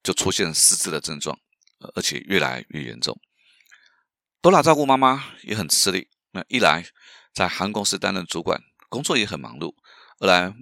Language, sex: Chinese, male